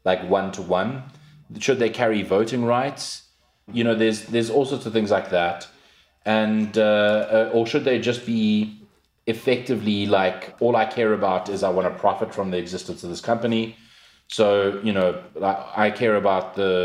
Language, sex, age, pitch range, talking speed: English, male, 30-49, 90-115 Hz, 180 wpm